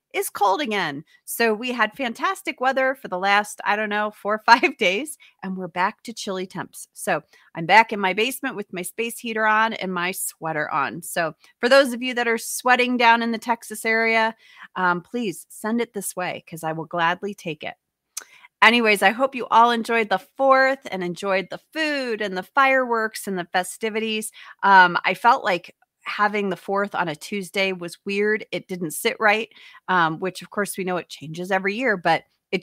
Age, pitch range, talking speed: 30-49, 185-235 Hz, 200 wpm